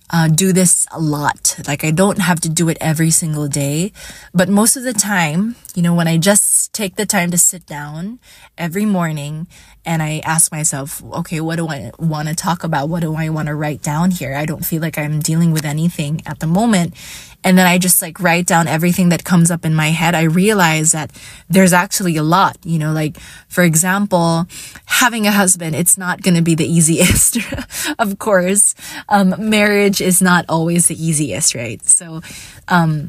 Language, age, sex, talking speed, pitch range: English, 20-39, female, 205 wpm, 160-195 Hz